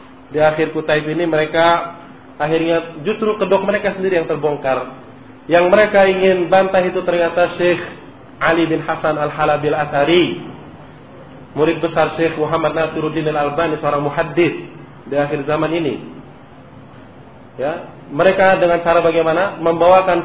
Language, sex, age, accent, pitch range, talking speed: Indonesian, male, 30-49, native, 145-175 Hz, 125 wpm